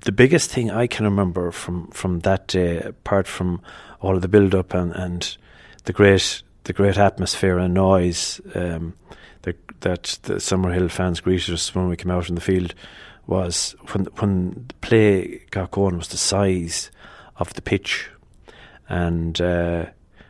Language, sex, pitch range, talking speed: English, male, 90-100 Hz, 165 wpm